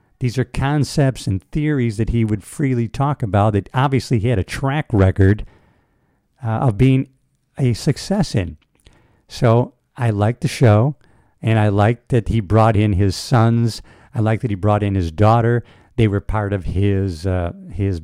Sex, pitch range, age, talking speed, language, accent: male, 100-130 Hz, 50-69, 175 wpm, English, American